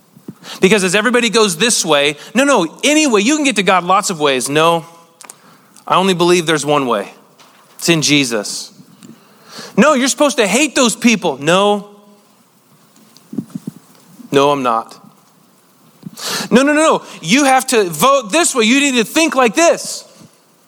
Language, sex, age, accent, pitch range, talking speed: English, male, 40-59, American, 165-225 Hz, 155 wpm